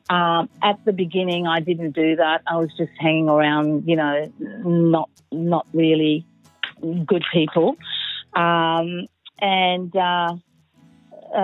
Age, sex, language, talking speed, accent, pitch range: 50-69, female, English, 120 wpm, Australian, 170-225 Hz